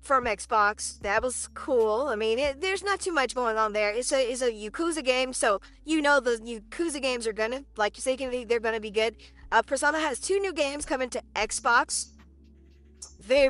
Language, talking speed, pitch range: English, 210 wpm, 220-260 Hz